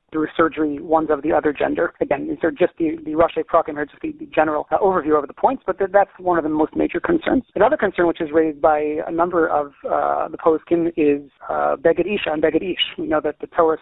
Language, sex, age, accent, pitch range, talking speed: English, male, 40-59, American, 155-185 Hz, 230 wpm